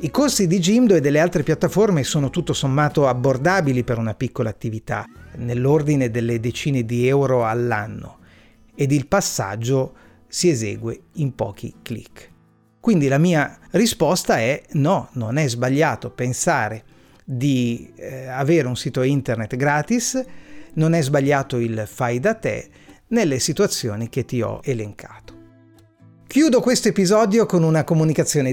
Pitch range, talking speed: 125-170 Hz, 135 wpm